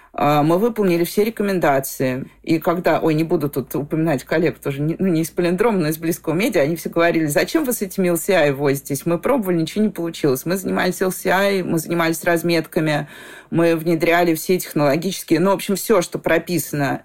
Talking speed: 185 wpm